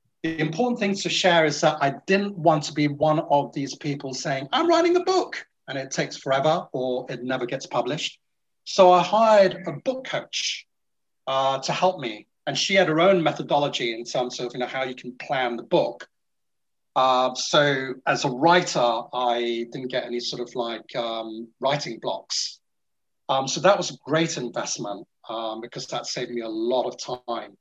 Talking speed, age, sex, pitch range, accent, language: 190 wpm, 40-59, male, 125-170 Hz, British, English